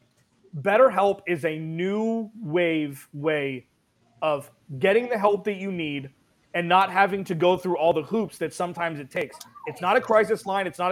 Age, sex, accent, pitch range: 30-49, male, American, 155-195 Hz